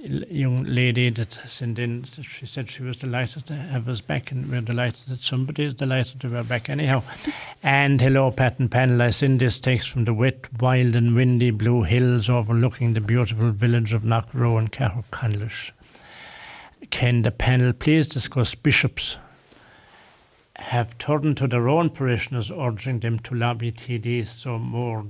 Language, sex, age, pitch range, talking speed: English, male, 60-79, 115-130 Hz, 165 wpm